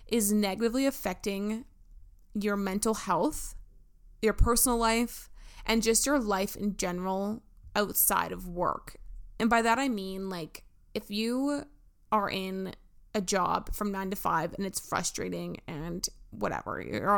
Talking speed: 140 wpm